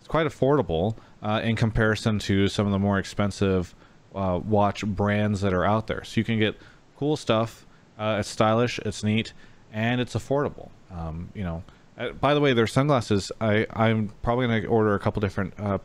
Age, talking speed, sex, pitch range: 30-49, 195 wpm, male, 100-120 Hz